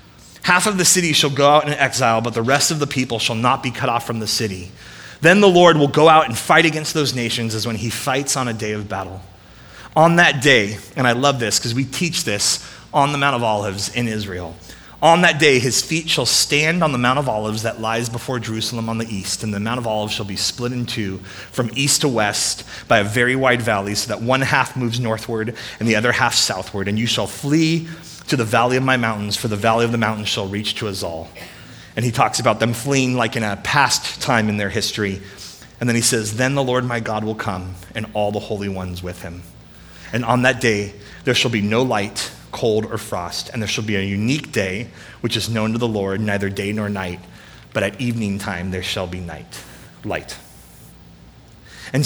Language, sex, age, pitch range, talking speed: English, male, 30-49, 105-135 Hz, 235 wpm